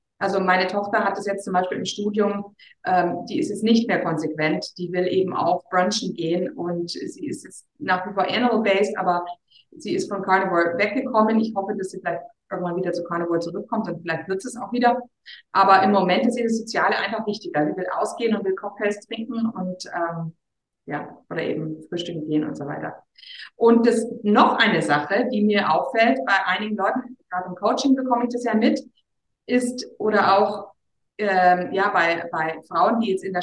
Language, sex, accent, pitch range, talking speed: German, female, German, 180-230 Hz, 195 wpm